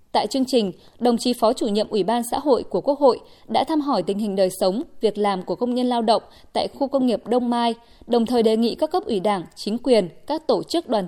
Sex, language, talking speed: female, Vietnamese, 265 wpm